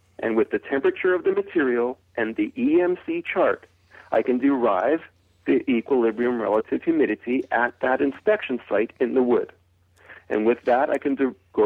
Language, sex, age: English, male, 40-59